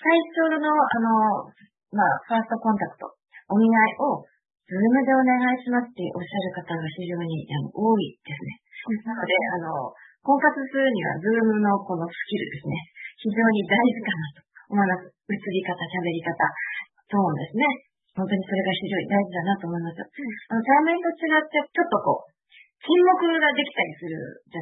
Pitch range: 180-255 Hz